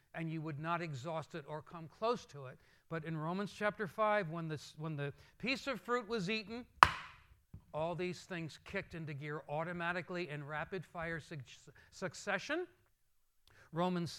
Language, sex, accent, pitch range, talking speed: English, male, American, 165-220 Hz, 150 wpm